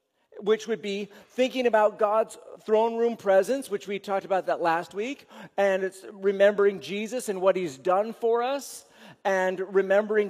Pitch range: 185-235 Hz